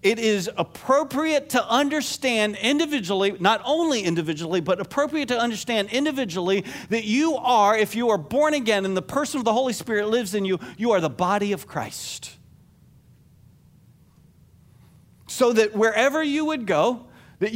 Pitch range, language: 160-235 Hz, English